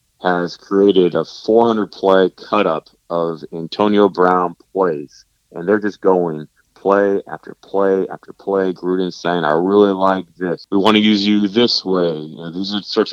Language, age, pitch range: English, 30-49, 90-100 Hz